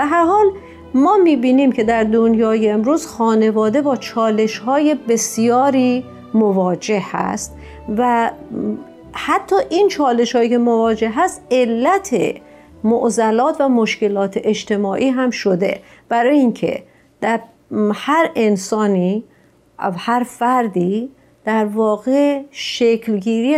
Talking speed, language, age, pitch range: 105 wpm, Persian, 50-69, 210-250 Hz